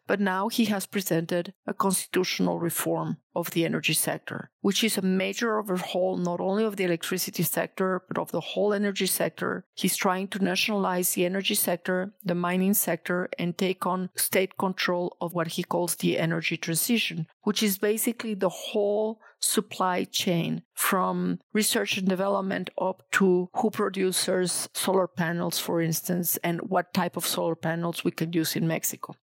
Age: 40-59